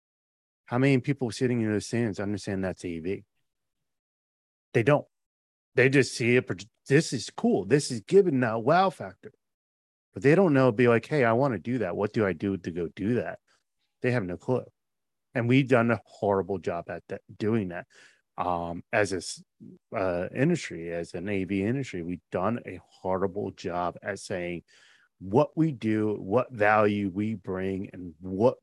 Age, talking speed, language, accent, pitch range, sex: 30-49, 180 wpm, English, American, 95-125 Hz, male